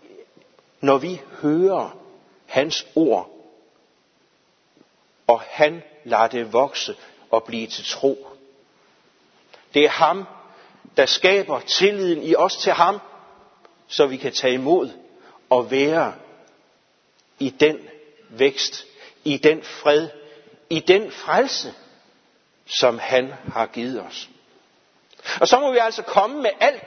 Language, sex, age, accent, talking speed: Danish, male, 60-79, native, 120 wpm